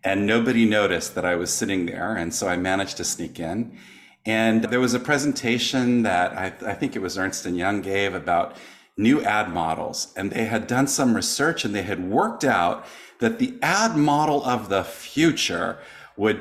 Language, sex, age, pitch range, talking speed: English, male, 40-59, 95-130 Hz, 190 wpm